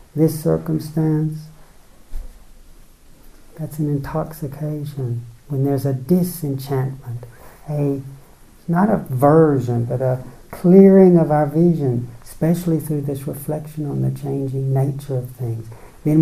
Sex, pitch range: male, 125-155 Hz